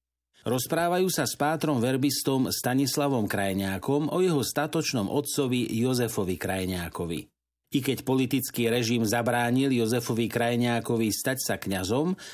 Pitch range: 115-140 Hz